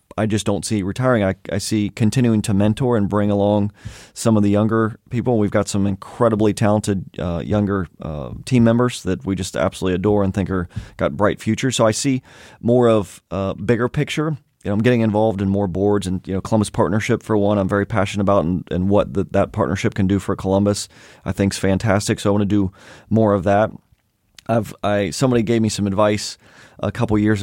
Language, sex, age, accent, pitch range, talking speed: English, male, 30-49, American, 100-115 Hz, 215 wpm